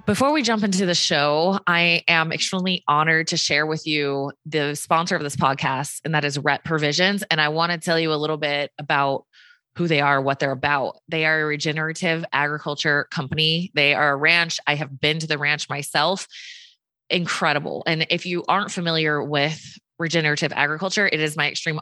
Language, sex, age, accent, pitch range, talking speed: English, female, 20-39, American, 145-175 Hz, 195 wpm